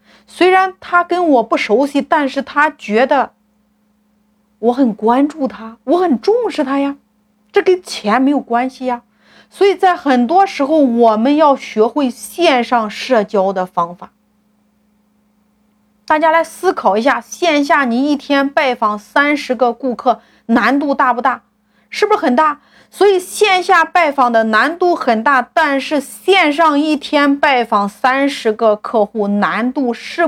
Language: Chinese